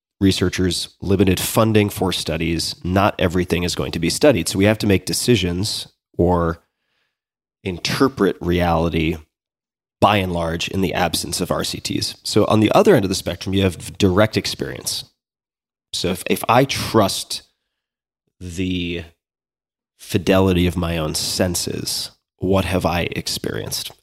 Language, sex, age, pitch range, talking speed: English, male, 30-49, 85-105 Hz, 140 wpm